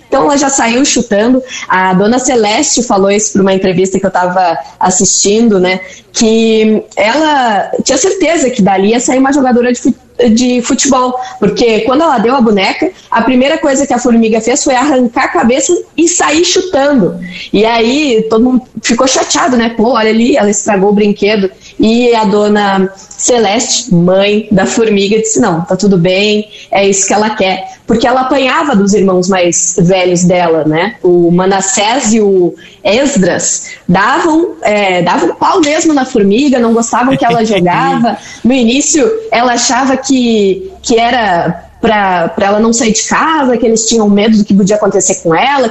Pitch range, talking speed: 195-255 Hz, 170 wpm